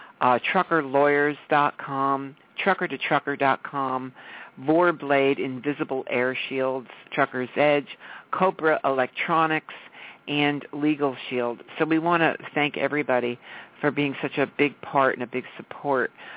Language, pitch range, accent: English, 135-170 Hz, American